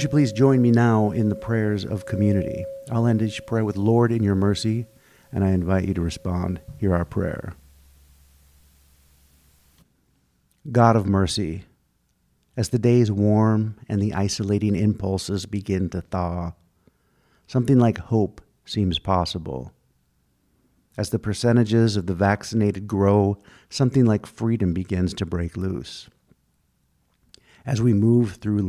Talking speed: 135 wpm